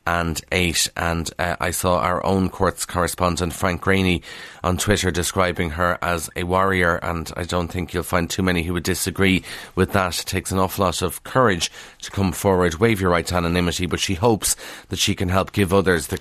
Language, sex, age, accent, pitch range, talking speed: English, male, 30-49, Irish, 90-105 Hz, 205 wpm